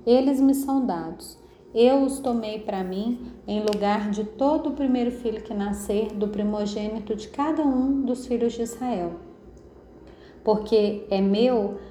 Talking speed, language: 150 wpm, Portuguese